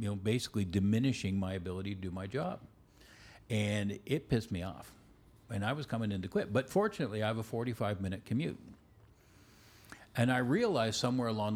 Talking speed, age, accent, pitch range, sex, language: 175 wpm, 50-69, American, 100-125 Hz, male, English